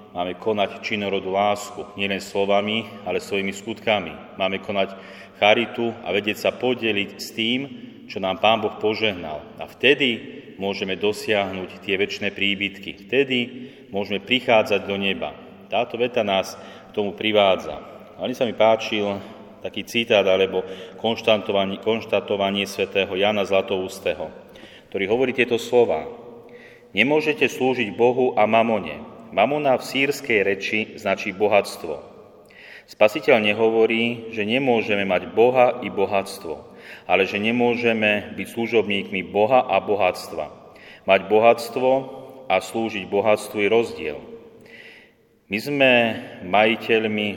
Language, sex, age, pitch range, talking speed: Slovak, male, 40-59, 100-115 Hz, 120 wpm